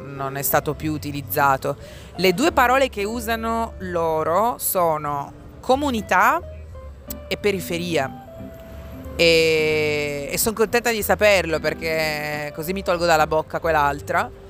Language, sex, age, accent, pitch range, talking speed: Italian, female, 30-49, native, 145-175 Hz, 115 wpm